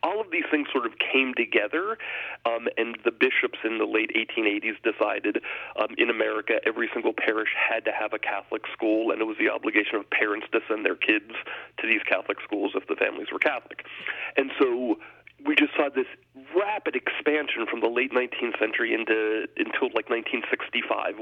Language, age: English, 40-59